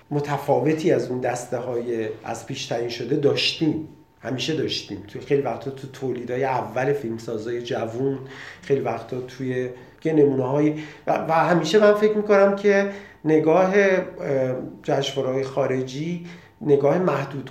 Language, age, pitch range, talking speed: Persian, 40-59, 130-155 Hz, 125 wpm